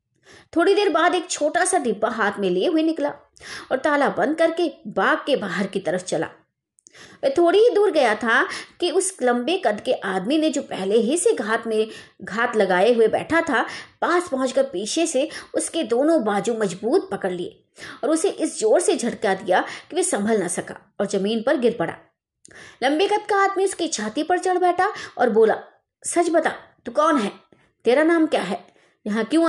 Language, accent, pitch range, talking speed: Hindi, native, 205-325 Hz, 115 wpm